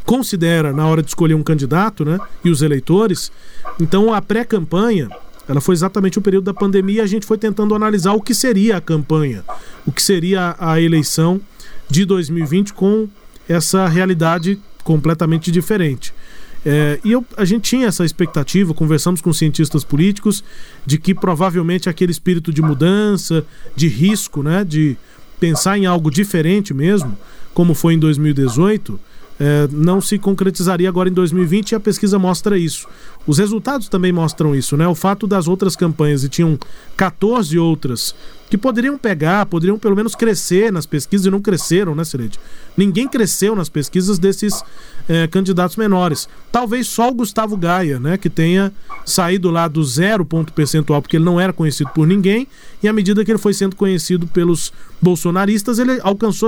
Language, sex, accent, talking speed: Portuguese, male, Brazilian, 165 wpm